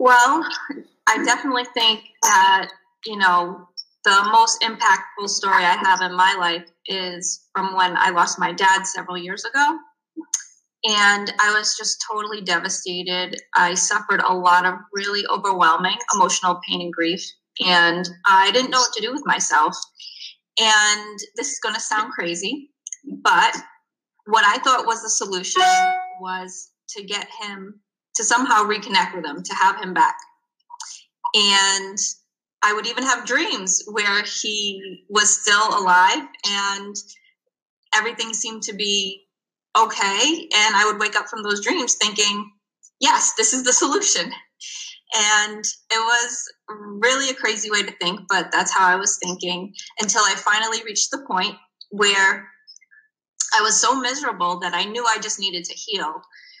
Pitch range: 190-240 Hz